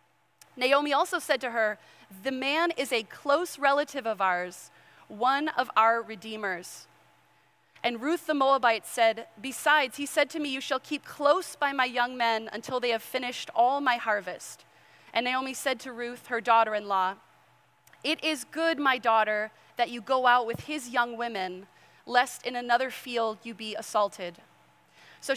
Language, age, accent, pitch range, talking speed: English, 30-49, American, 220-280 Hz, 165 wpm